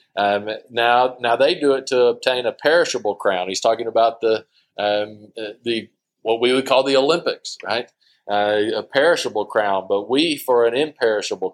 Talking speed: 170 wpm